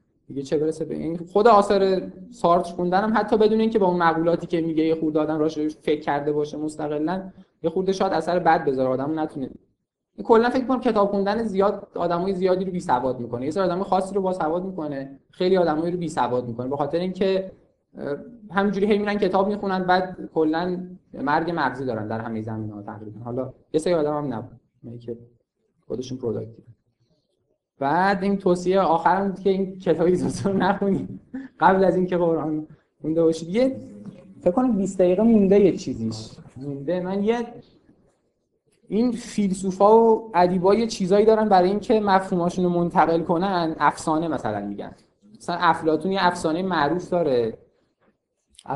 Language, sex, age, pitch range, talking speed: Persian, male, 20-39, 130-190 Hz, 160 wpm